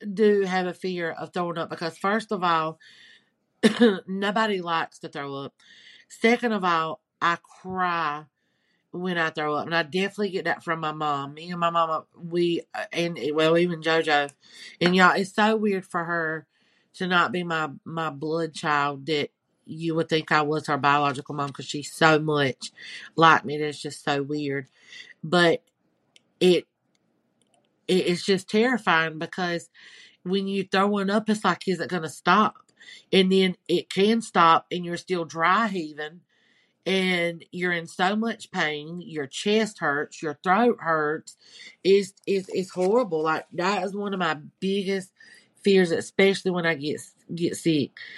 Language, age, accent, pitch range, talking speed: English, 40-59, American, 155-190 Hz, 165 wpm